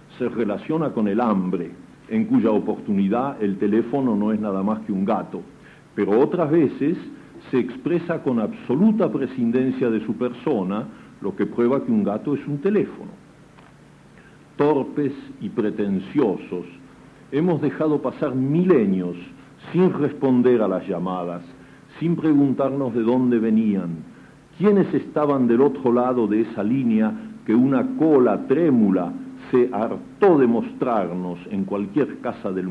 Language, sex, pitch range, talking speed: Spanish, male, 100-145 Hz, 135 wpm